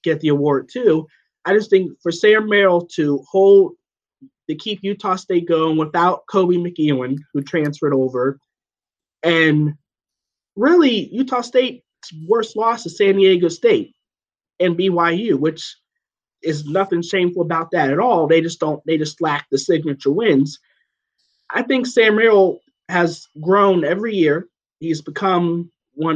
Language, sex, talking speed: English, male, 145 wpm